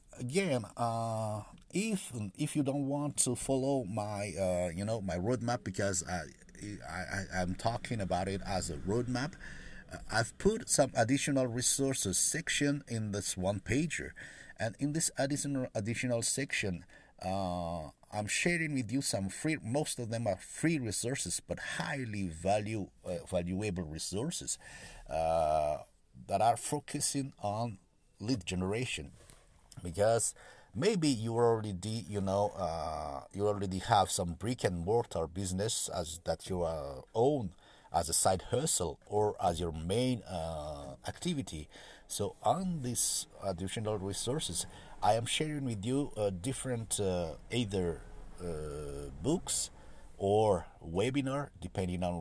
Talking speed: 135 wpm